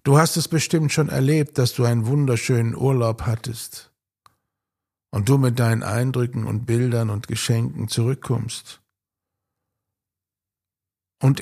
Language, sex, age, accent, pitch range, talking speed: German, male, 60-79, German, 100-145 Hz, 120 wpm